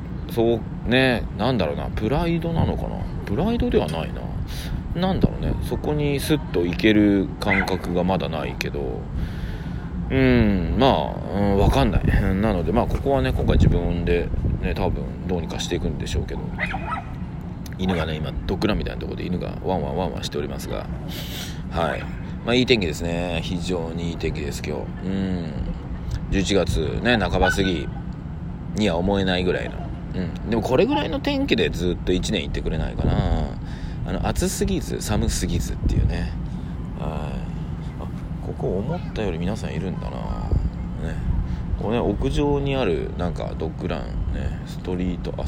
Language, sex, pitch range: Japanese, male, 85-105 Hz